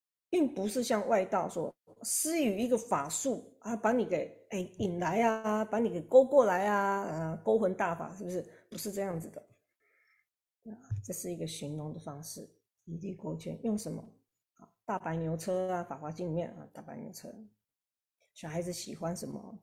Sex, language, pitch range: female, Chinese, 170-230 Hz